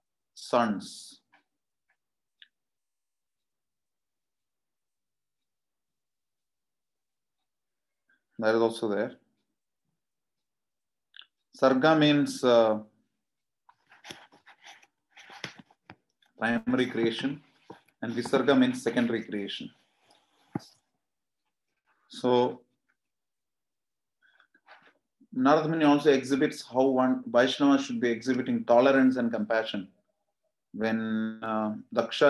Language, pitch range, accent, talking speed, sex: English, 115-140 Hz, Indian, 60 wpm, male